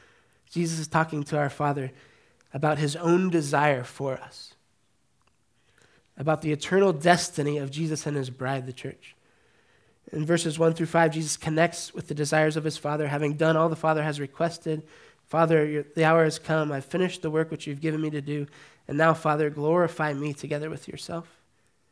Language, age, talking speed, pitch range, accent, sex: English, 20-39, 180 wpm, 145-165 Hz, American, male